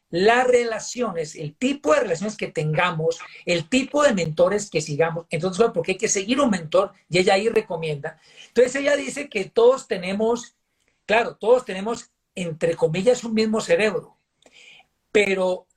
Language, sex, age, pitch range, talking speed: Spanish, male, 50-69, 180-240 Hz, 150 wpm